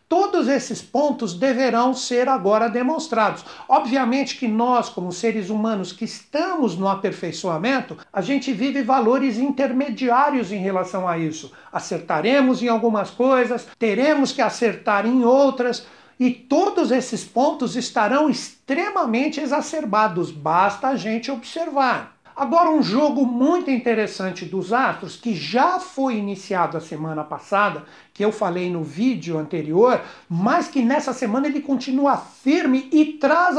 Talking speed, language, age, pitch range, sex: 135 wpm, Portuguese, 60-79, 205-275 Hz, male